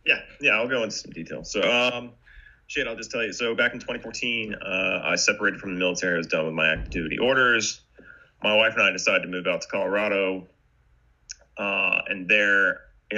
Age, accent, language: 30-49, American, English